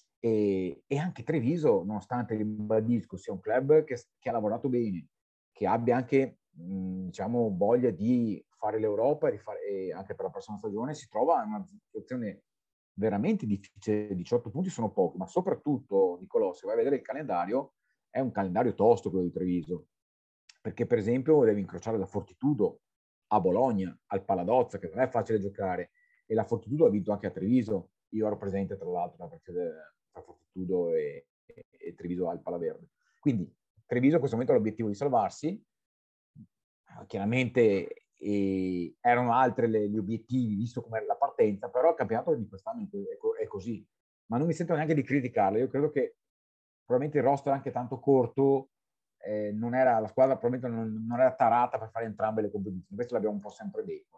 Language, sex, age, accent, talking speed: Italian, male, 40-59, native, 180 wpm